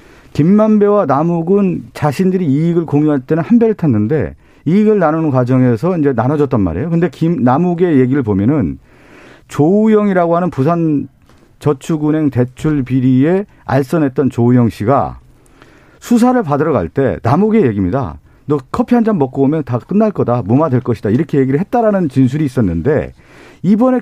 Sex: male